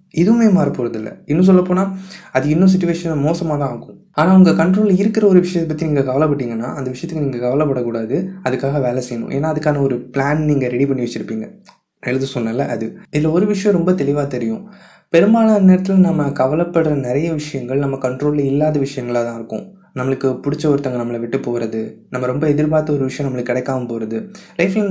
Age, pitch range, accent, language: 20-39, 130-170 Hz, native, Tamil